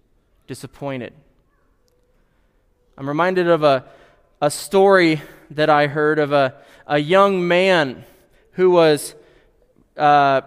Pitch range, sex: 150-190 Hz, male